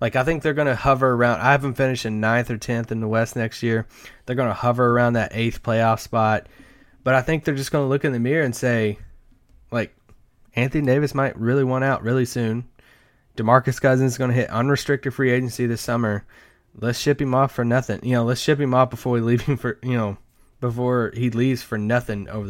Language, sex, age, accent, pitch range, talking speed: English, male, 20-39, American, 105-130 Hz, 220 wpm